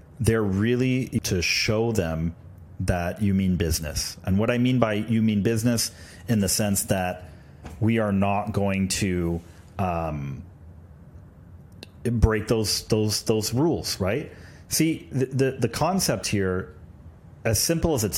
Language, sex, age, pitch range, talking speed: English, male, 40-59, 90-115 Hz, 140 wpm